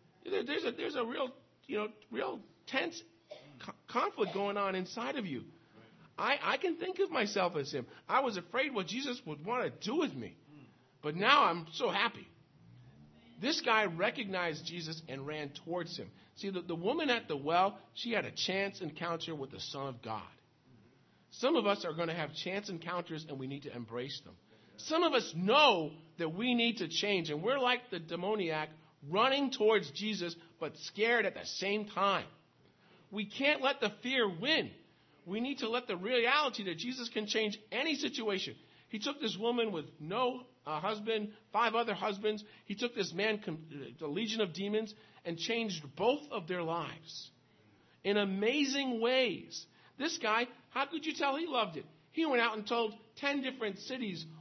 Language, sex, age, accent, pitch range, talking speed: English, male, 50-69, American, 160-235 Hz, 185 wpm